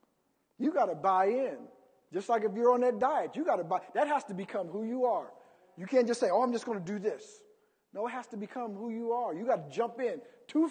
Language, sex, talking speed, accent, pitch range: English, male, 270 wpm, American, 175-250 Hz